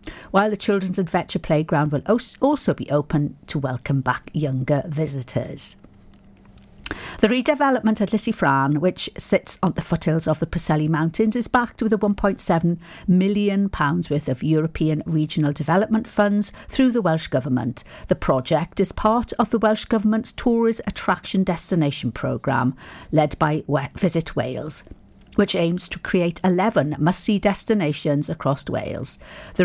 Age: 50-69